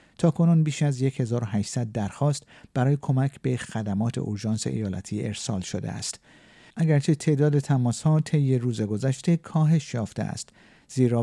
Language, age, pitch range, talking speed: Persian, 50-69, 110-155 Hz, 135 wpm